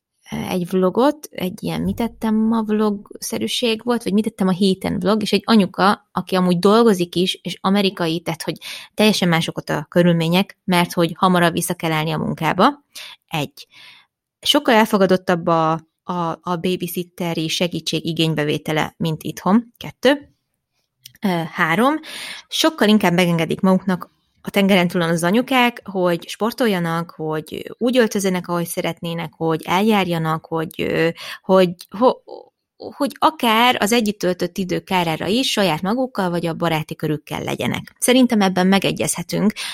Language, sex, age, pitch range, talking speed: Hungarian, female, 20-39, 170-215 Hz, 135 wpm